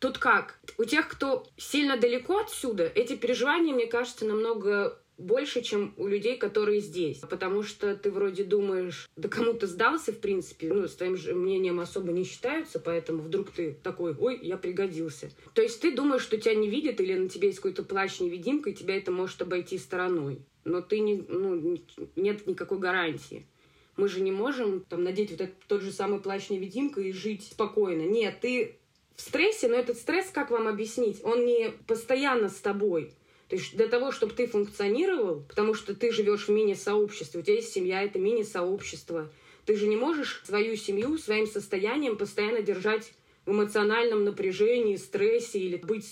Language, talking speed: Russian, 175 wpm